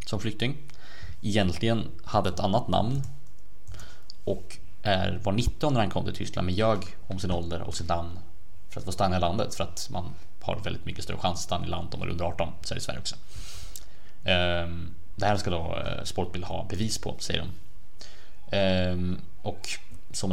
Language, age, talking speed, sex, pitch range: Swedish, 20-39, 180 wpm, male, 90-105 Hz